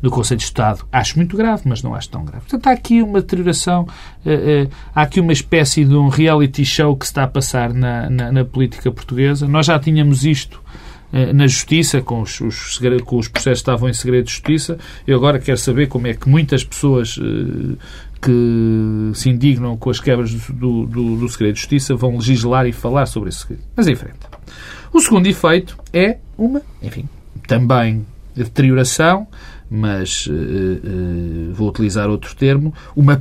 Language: Portuguese